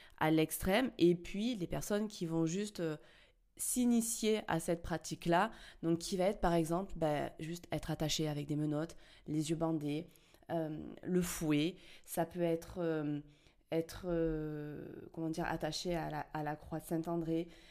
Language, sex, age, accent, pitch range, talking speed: French, female, 20-39, French, 165-215 Hz, 165 wpm